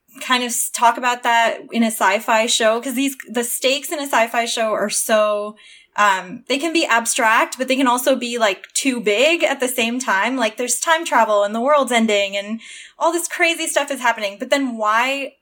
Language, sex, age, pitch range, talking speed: English, female, 10-29, 210-265 Hz, 210 wpm